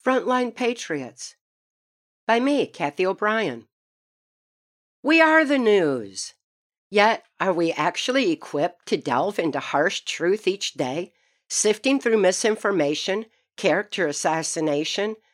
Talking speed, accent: 105 wpm, American